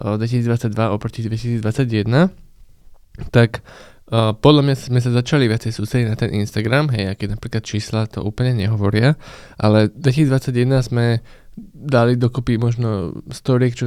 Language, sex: Slovak, male